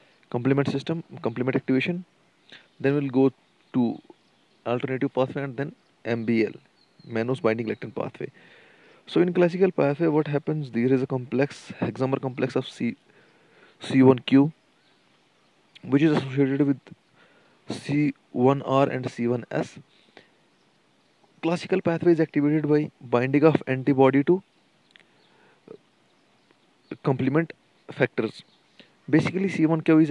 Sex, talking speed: male, 110 wpm